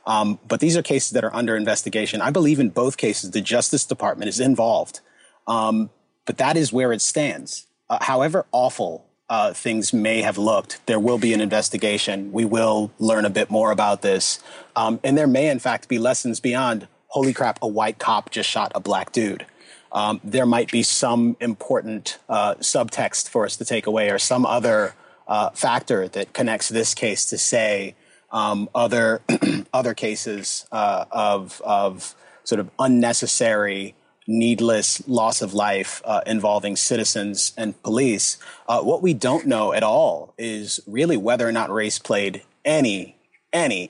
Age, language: 30-49, English